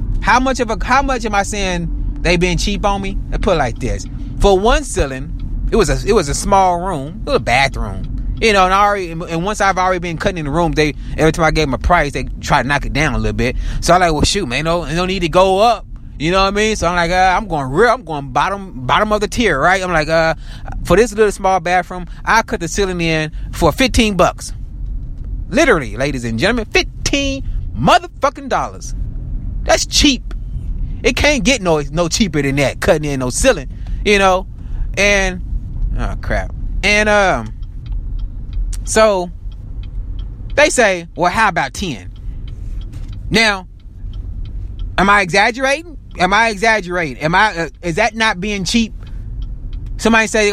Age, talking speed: 30-49, 195 wpm